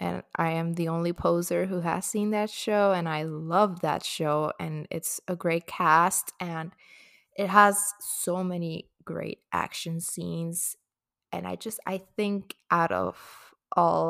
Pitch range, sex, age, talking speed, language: 165-200 Hz, female, 20-39, 160 wpm, English